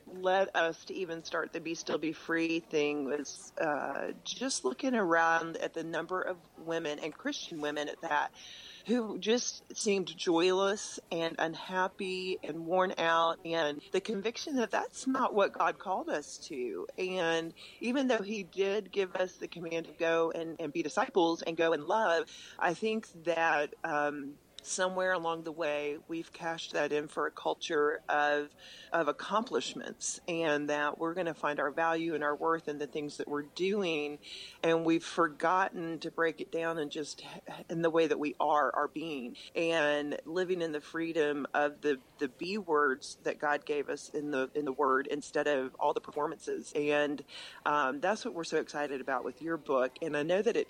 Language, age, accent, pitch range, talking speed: English, 40-59, American, 150-185 Hz, 185 wpm